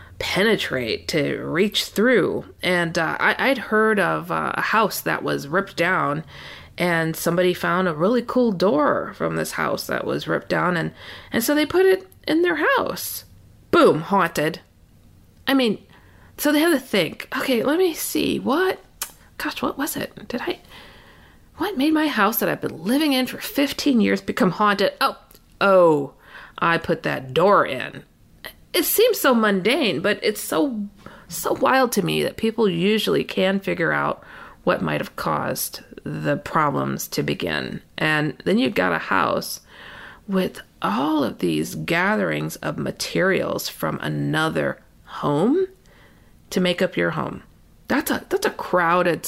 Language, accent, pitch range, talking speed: English, American, 160-260 Hz, 160 wpm